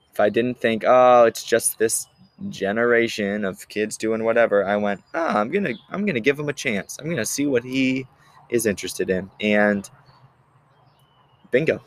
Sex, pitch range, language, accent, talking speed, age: male, 100-130 Hz, English, American, 185 wpm, 20-39